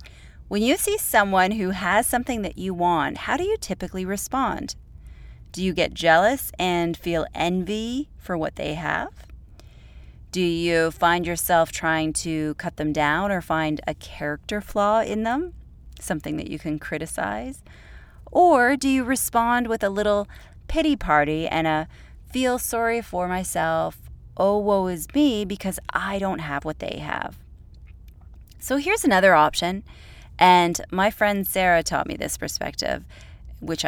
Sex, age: female, 30-49